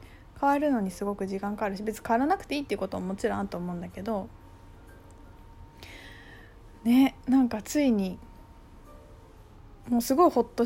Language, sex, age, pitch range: Japanese, female, 20-39, 185-240 Hz